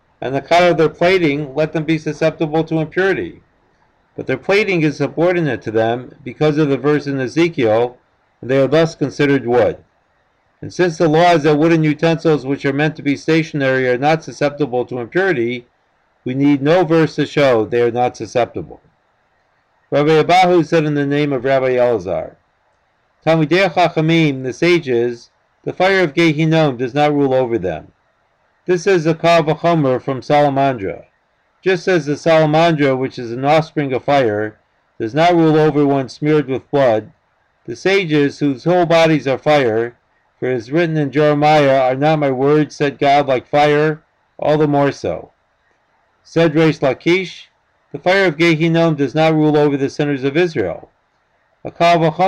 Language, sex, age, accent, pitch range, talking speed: English, male, 50-69, American, 135-165 Hz, 170 wpm